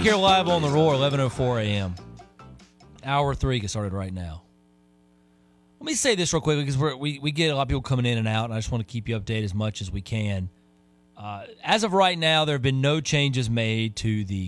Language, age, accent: English, 30-49, American